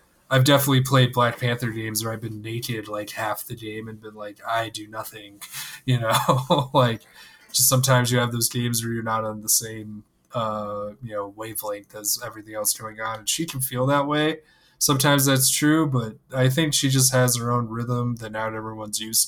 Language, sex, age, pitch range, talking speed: English, male, 20-39, 110-125 Hz, 205 wpm